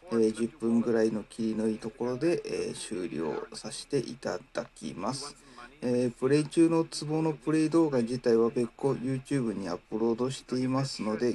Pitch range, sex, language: 120-155 Hz, male, Japanese